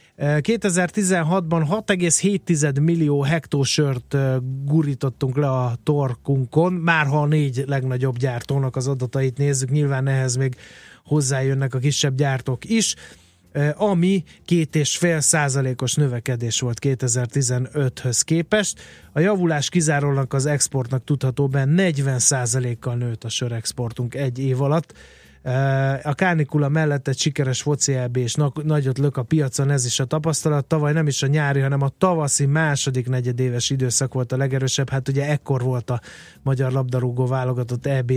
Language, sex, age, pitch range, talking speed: Hungarian, male, 30-49, 130-150 Hz, 130 wpm